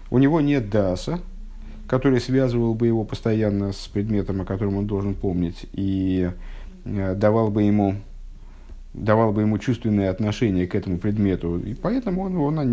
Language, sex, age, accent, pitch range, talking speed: Russian, male, 50-69, native, 100-130 Hz, 150 wpm